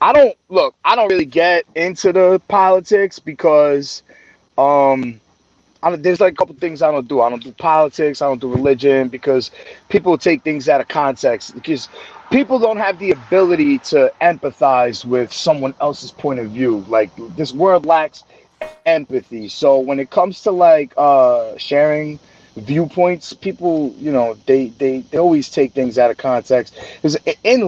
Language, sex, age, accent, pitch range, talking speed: English, male, 30-49, American, 135-185 Hz, 170 wpm